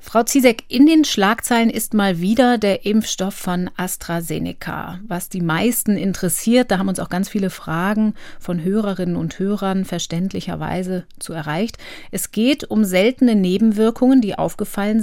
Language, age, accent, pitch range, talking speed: German, 30-49, German, 185-225 Hz, 150 wpm